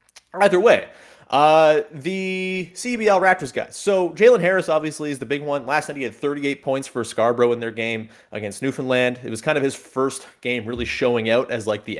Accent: American